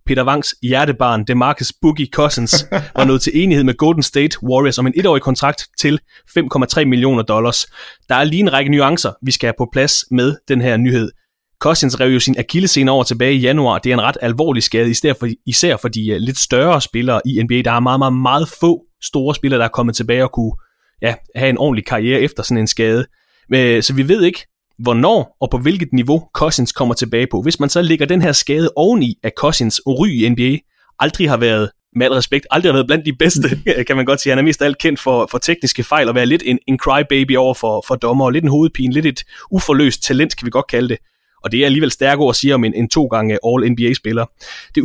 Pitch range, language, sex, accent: 125-150 Hz, English, male, Danish